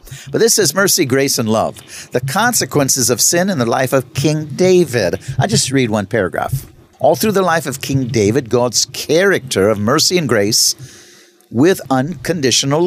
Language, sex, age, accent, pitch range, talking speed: English, male, 50-69, American, 130-175 Hz, 175 wpm